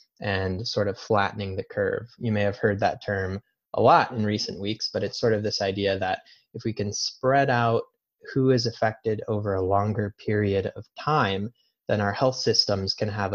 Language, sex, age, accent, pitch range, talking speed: English, male, 20-39, American, 100-120 Hz, 200 wpm